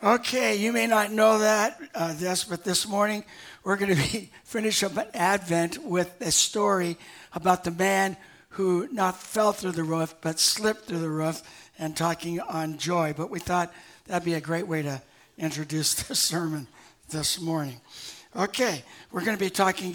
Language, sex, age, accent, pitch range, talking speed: English, male, 60-79, American, 170-220 Hz, 170 wpm